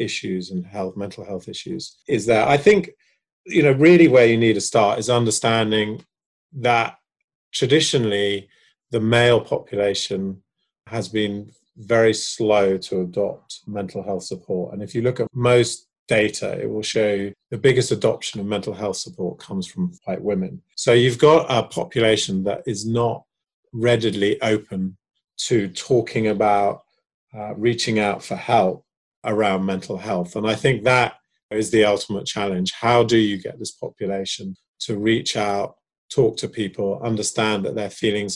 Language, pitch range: English, 100-120 Hz